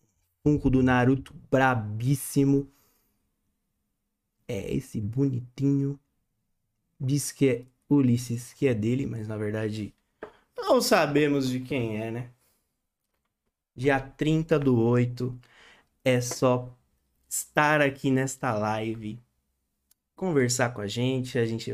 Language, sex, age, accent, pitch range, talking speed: Portuguese, male, 20-39, Brazilian, 110-135 Hz, 110 wpm